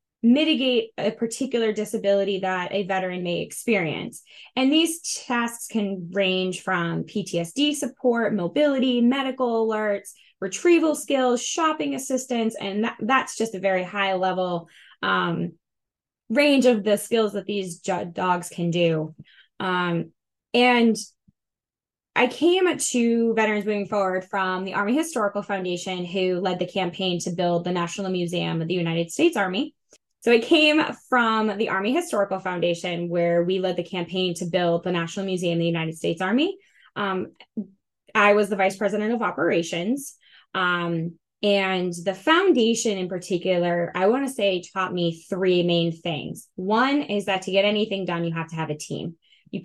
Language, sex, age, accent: English, female, 10-29, American